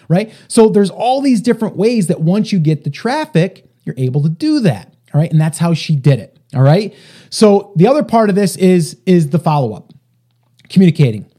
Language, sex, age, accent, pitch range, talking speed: English, male, 30-49, American, 150-205 Hz, 205 wpm